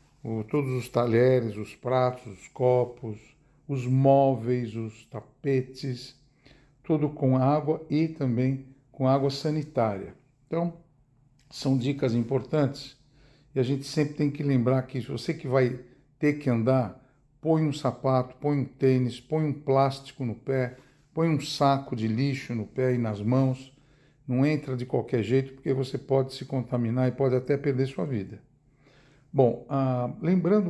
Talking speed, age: 150 wpm, 60-79